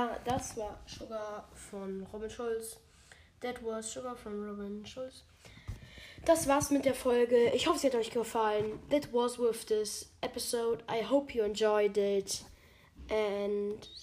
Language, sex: German, female